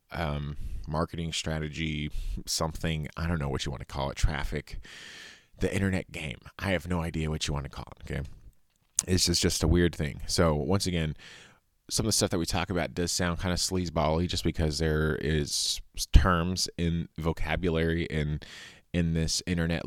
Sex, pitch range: male, 75-85 Hz